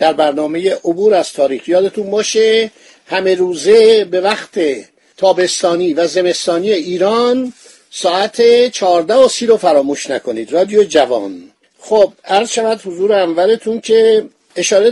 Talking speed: 115 wpm